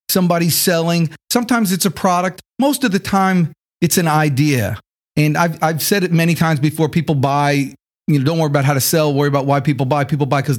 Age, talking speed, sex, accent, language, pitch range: 40-59, 220 wpm, male, American, English, 140-175 Hz